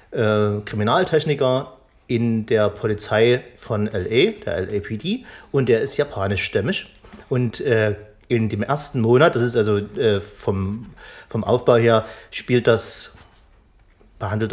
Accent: German